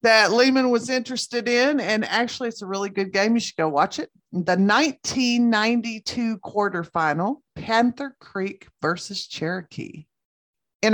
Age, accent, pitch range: 50-69, American, 180-235 Hz